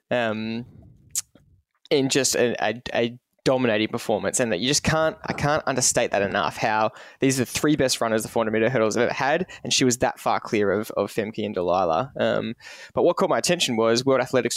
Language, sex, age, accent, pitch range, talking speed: English, male, 10-29, Australian, 115-135 Hz, 215 wpm